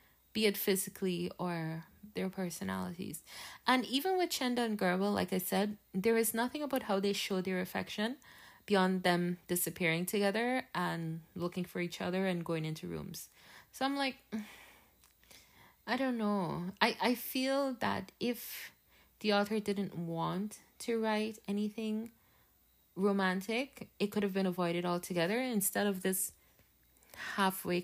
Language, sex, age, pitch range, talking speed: English, female, 20-39, 175-215 Hz, 140 wpm